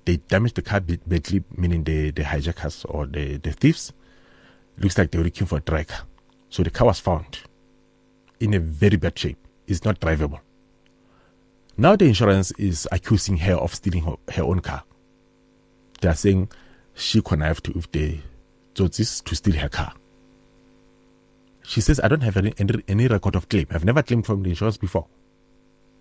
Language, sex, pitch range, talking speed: English, male, 85-95 Hz, 180 wpm